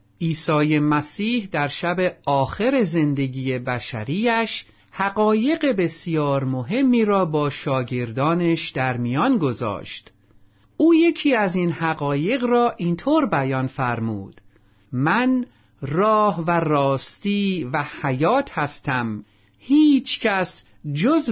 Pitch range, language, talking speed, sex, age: 135-195 Hz, Persian, 95 wpm, male, 50-69